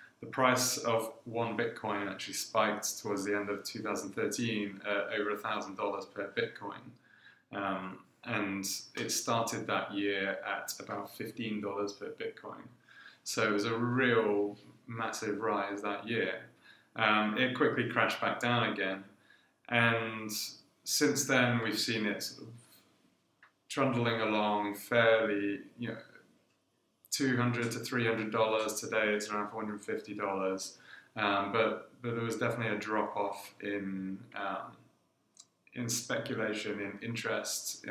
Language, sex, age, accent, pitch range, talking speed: English, male, 30-49, British, 105-120 Hz, 130 wpm